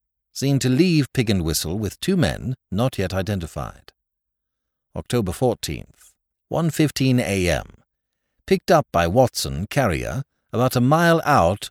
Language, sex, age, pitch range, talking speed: English, male, 60-79, 90-135 Hz, 135 wpm